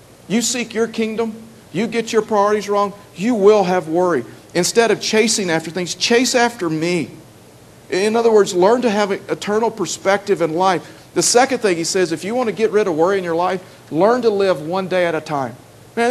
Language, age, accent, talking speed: English, 50-69, American, 210 wpm